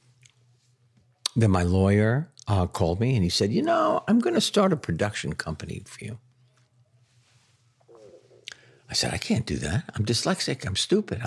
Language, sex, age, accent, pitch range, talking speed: English, male, 60-79, American, 95-125 Hz, 155 wpm